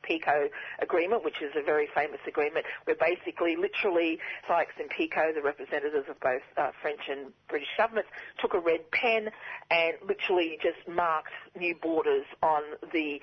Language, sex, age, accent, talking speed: English, female, 40-59, Australian, 160 wpm